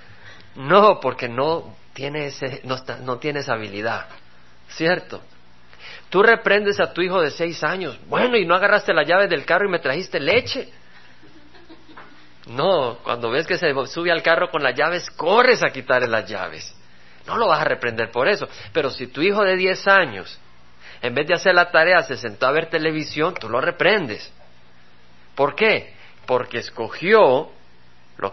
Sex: male